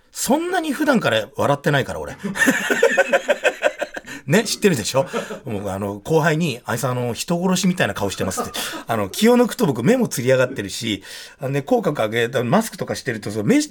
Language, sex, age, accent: Japanese, male, 40-59, native